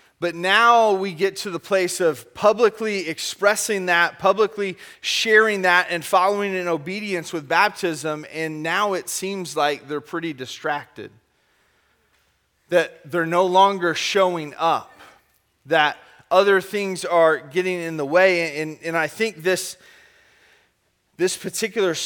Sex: male